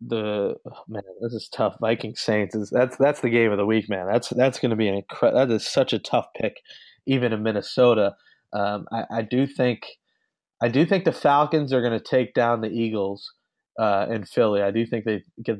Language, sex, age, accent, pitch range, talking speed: English, male, 30-49, American, 105-130 Hz, 225 wpm